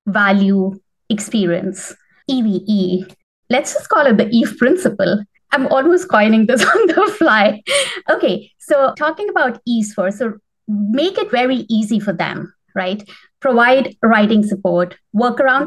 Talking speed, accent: 140 wpm, Indian